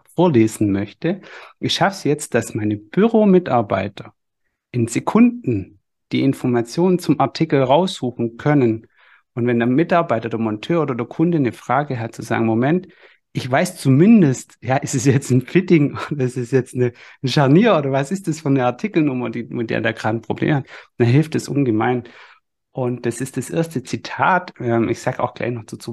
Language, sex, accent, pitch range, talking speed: German, male, German, 115-155 Hz, 185 wpm